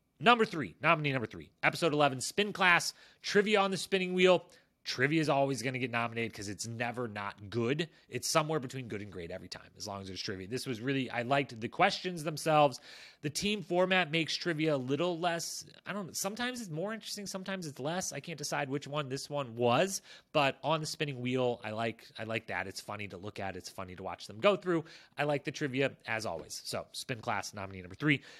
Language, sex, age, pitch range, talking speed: English, male, 30-49, 115-160 Hz, 225 wpm